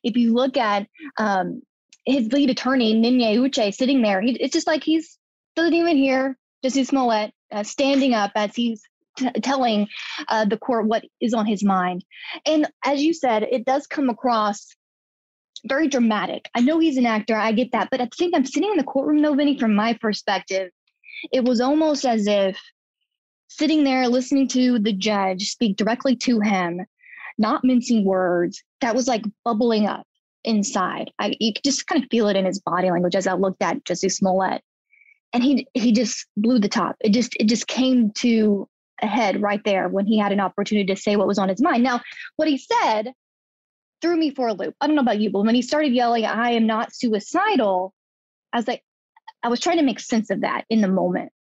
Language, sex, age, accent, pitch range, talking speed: English, female, 20-39, American, 210-275 Hz, 205 wpm